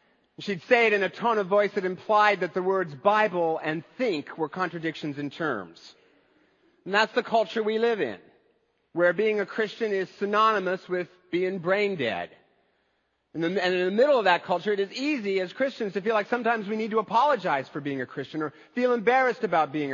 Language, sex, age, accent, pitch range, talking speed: English, male, 40-59, American, 185-230 Hz, 200 wpm